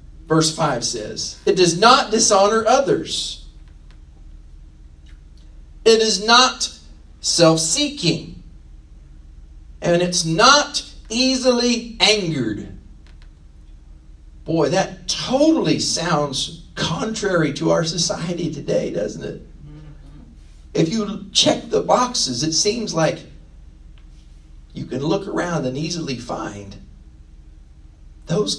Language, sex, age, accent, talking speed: English, male, 50-69, American, 90 wpm